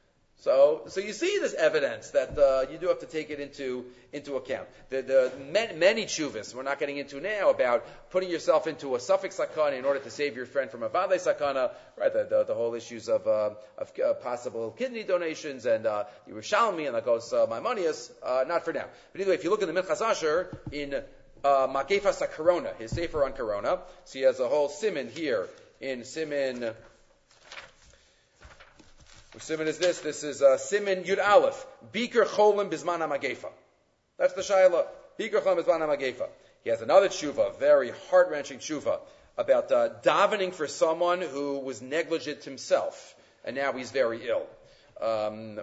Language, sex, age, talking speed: English, male, 40-59, 180 wpm